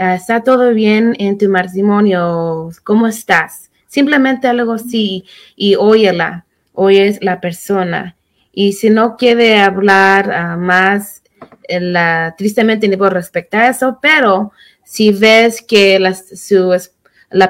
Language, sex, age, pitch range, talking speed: Spanish, female, 20-39, 175-205 Hz, 135 wpm